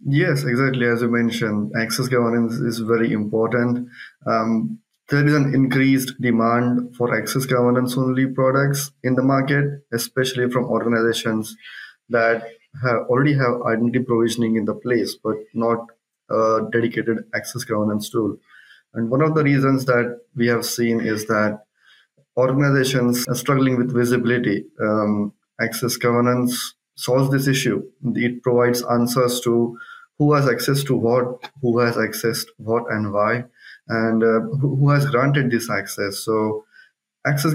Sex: male